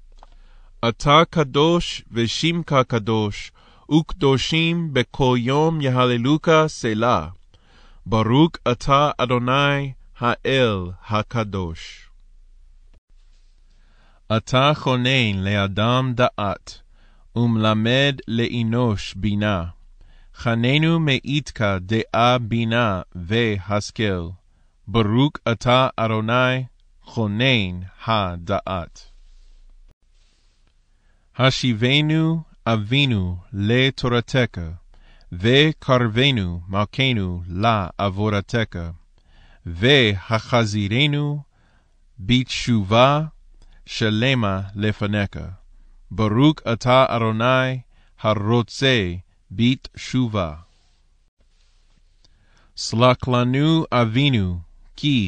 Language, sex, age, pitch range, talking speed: English, male, 20-39, 95-130 Hz, 65 wpm